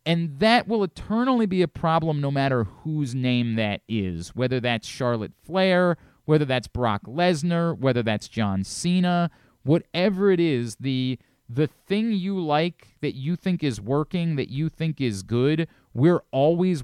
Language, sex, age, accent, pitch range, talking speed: English, male, 30-49, American, 125-180 Hz, 160 wpm